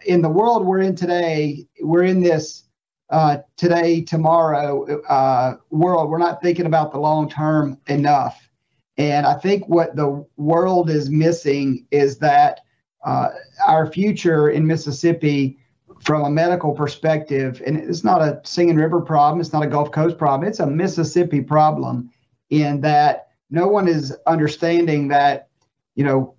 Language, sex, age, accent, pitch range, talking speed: English, male, 40-59, American, 145-175 Hz, 150 wpm